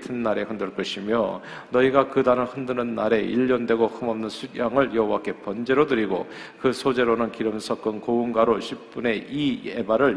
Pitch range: 105-125 Hz